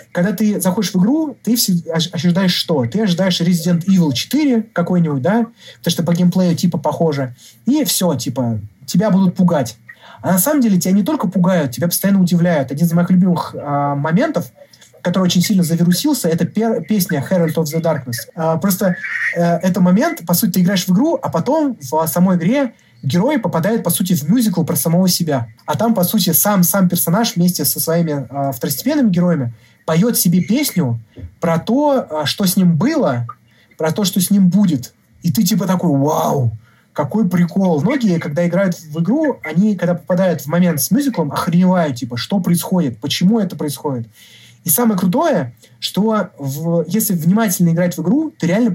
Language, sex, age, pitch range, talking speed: Russian, male, 30-49, 160-195 Hz, 180 wpm